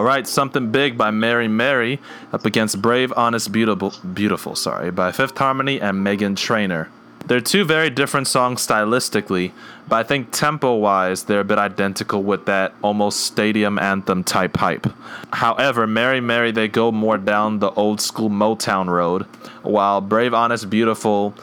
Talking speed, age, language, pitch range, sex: 155 wpm, 20-39, English, 95-115 Hz, male